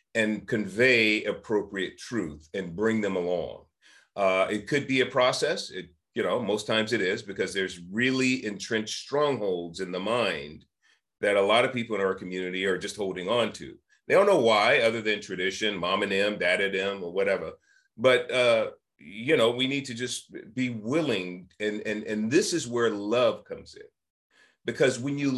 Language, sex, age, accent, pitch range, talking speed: English, male, 40-59, American, 100-140 Hz, 185 wpm